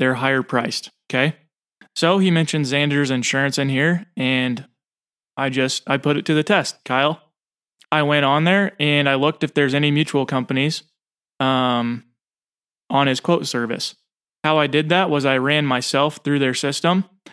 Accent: American